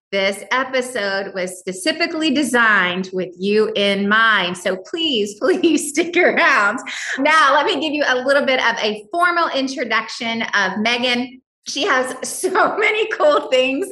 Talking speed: 145 wpm